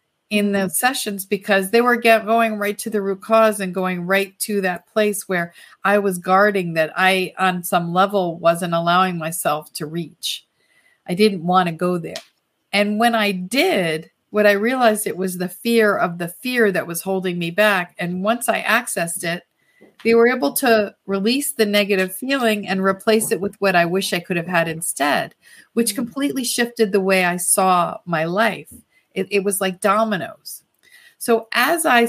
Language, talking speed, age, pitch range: English, 185 wpm, 40-59, 180-225 Hz